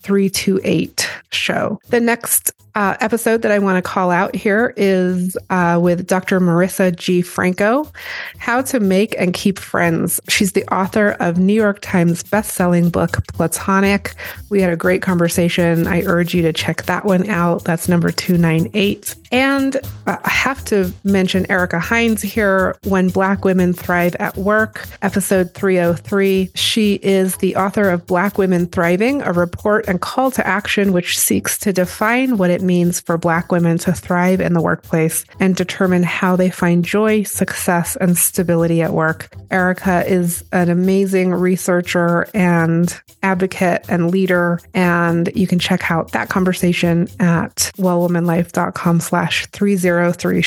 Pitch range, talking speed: 175-200 Hz, 160 wpm